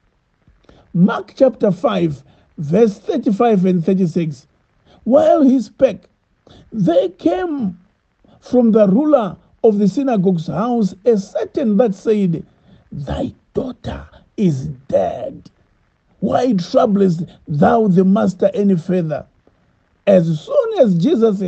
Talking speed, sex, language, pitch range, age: 105 wpm, male, English, 185-270 Hz, 50-69